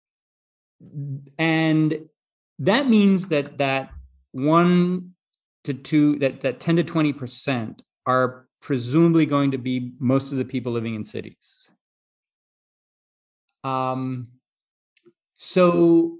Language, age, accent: English, 30-49, American